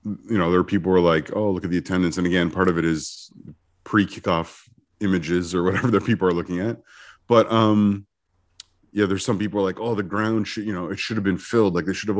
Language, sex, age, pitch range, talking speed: English, male, 30-49, 90-115 Hz, 250 wpm